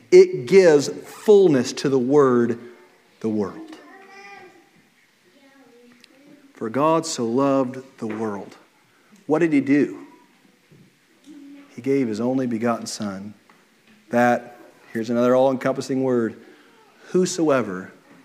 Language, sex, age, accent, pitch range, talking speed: English, male, 40-59, American, 120-175 Hz, 100 wpm